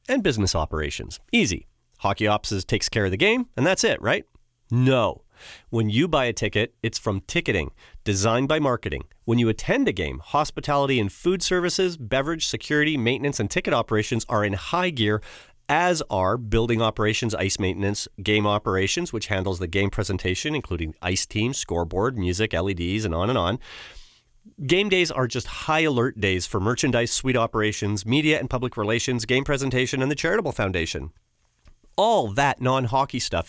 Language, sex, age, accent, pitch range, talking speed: English, male, 40-59, American, 100-145 Hz, 170 wpm